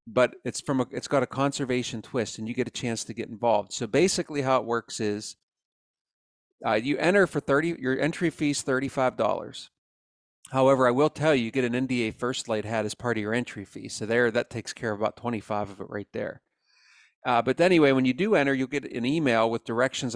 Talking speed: 225 wpm